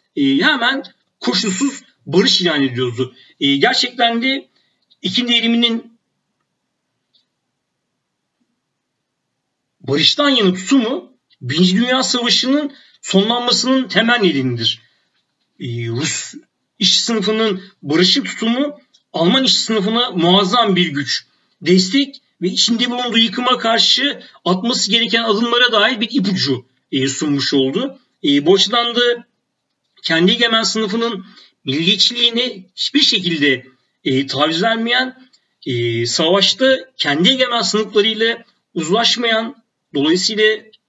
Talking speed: 95 wpm